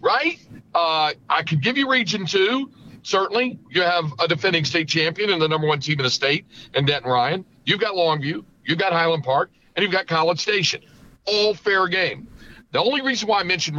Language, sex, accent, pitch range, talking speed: English, male, American, 135-195 Hz, 200 wpm